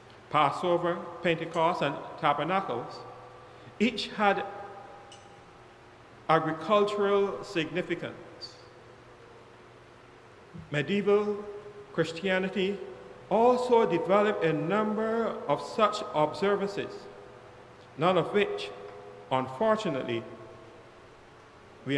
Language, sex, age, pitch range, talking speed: English, male, 50-69, 140-190 Hz, 60 wpm